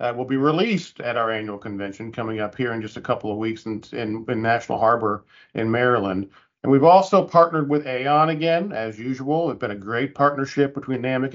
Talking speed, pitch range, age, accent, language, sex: 210 wpm, 125-145 Hz, 50-69, American, English, male